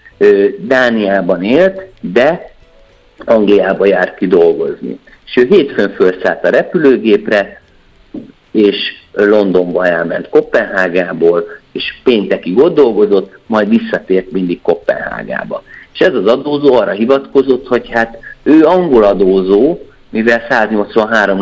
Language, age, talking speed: Hungarian, 50-69, 105 wpm